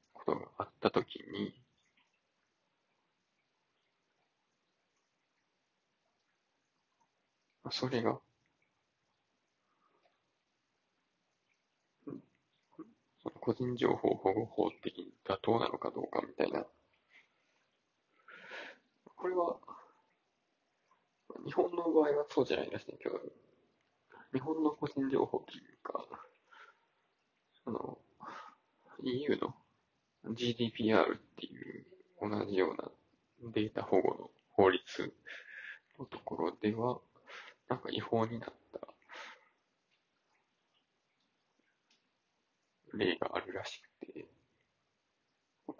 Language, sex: Japanese, male